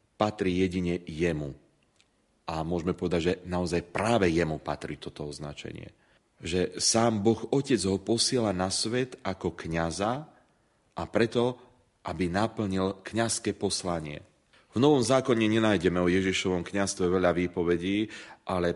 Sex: male